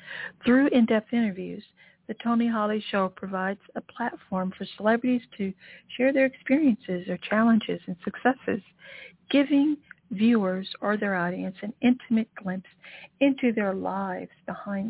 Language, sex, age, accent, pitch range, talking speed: English, female, 60-79, American, 190-230 Hz, 130 wpm